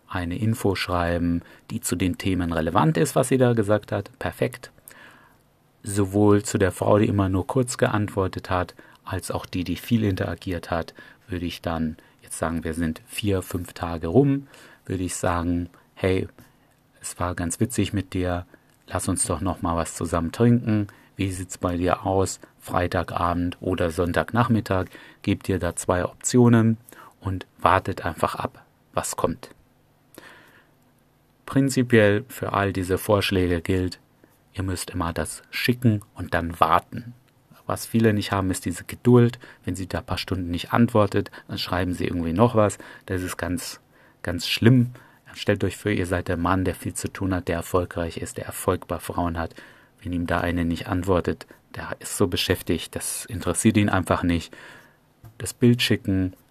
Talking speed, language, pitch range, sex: 170 wpm, German, 90-115 Hz, male